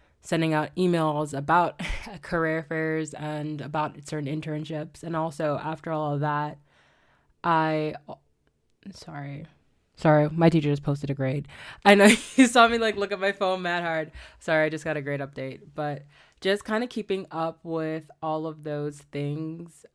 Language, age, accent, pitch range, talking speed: English, 20-39, American, 145-160 Hz, 170 wpm